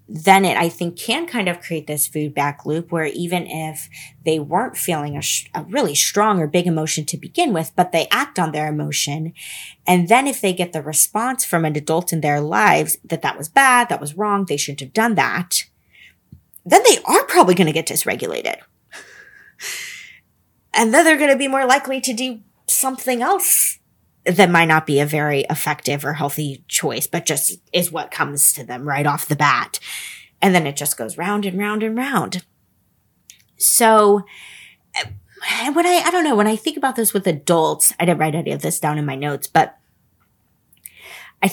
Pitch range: 150-220 Hz